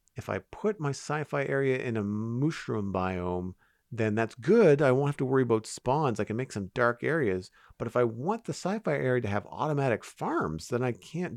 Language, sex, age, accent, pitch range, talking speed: English, male, 40-59, American, 95-125 Hz, 210 wpm